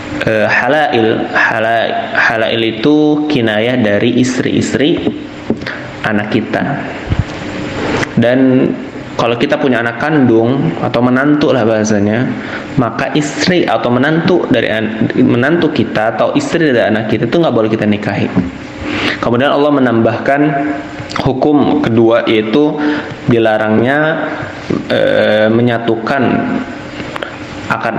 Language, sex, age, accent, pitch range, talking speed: Indonesian, male, 20-39, native, 110-135 Hz, 100 wpm